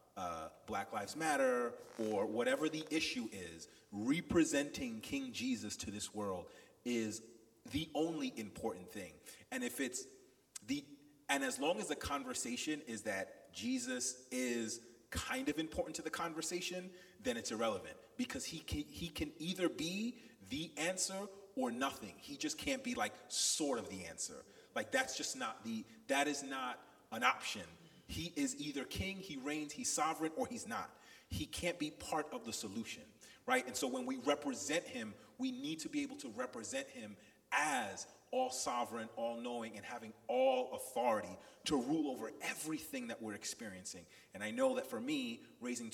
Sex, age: male, 30-49